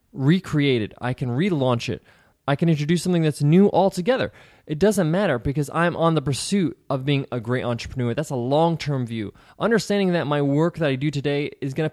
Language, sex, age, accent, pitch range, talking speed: English, male, 20-39, American, 130-175 Hz, 210 wpm